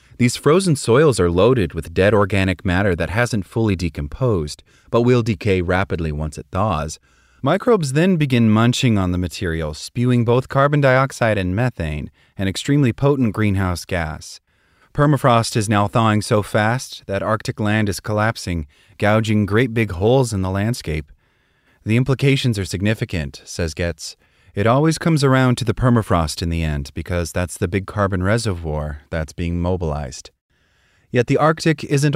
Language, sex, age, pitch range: English, male, 30-49, 90-125 Hz